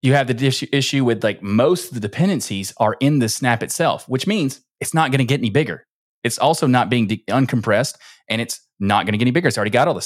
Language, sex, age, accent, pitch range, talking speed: English, male, 20-39, American, 115-145 Hz, 255 wpm